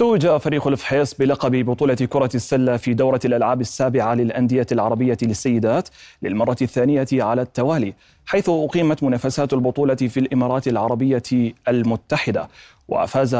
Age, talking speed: 30-49, 120 wpm